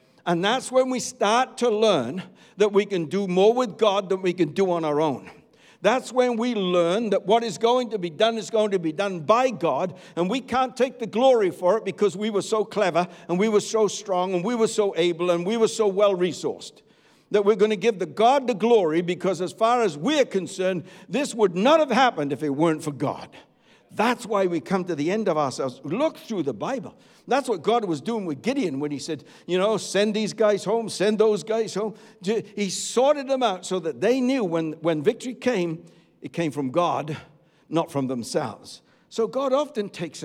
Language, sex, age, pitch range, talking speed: English, male, 60-79, 180-230 Hz, 220 wpm